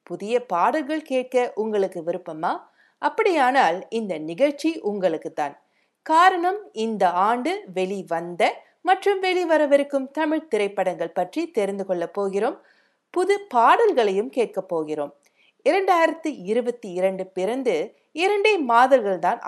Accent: native